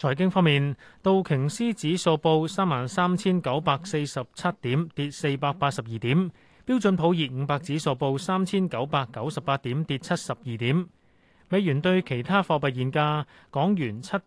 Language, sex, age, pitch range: Chinese, male, 30-49, 130-180 Hz